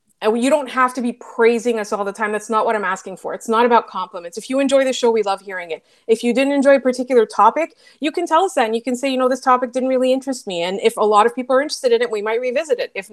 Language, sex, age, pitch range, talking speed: English, female, 30-49, 220-275 Hz, 315 wpm